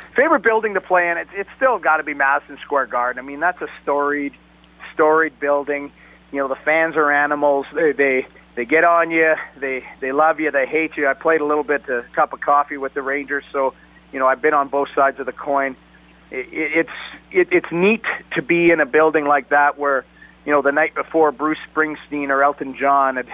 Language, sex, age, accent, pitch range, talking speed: English, male, 40-59, American, 140-165 Hz, 225 wpm